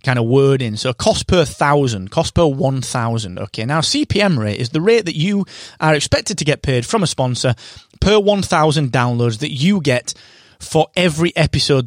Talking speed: 180 wpm